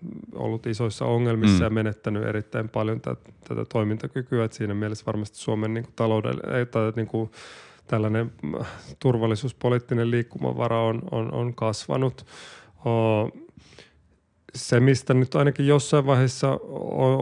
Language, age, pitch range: Finnish, 30-49, 105-120 Hz